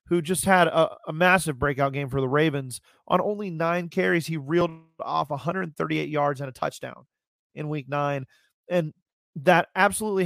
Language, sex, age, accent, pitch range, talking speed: English, male, 30-49, American, 140-165 Hz, 170 wpm